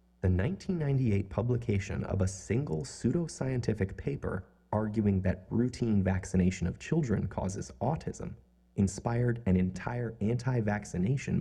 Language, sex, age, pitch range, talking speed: English, male, 30-49, 90-120 Hz, 105 wpm